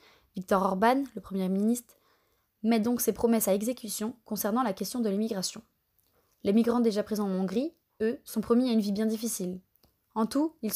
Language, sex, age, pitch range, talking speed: French, female, 20-39, 195-230 Hz, 185 wpm